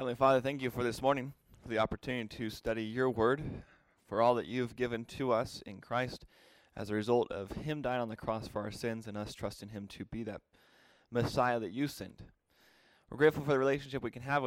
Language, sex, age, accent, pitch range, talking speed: English, male, 20-39, American, 105-125 Hz, 225 wpm